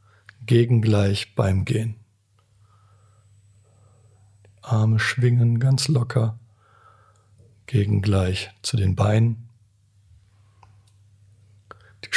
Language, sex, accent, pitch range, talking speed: German, male, German, 100-115 Hz, 65 wpm